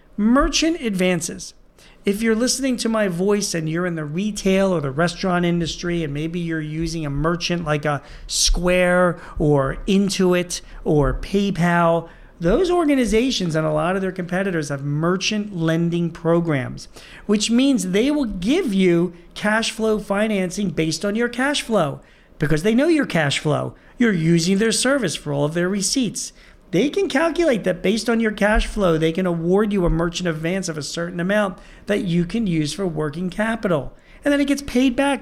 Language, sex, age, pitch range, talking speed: English, male, 40-59, 165-220 Hz, 175 wpm